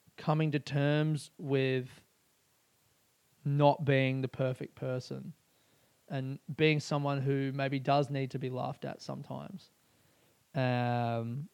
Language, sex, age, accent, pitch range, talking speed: English, male, 20-39, Australian, 130-150 Hz, 115 wpm